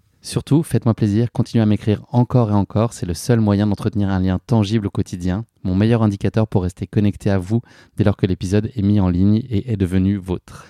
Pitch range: 95-110 Hz